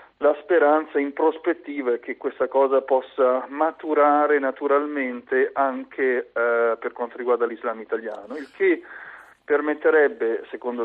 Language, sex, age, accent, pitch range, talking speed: Italian, male, 40-59, native, 125-150 Hz, 120 wpm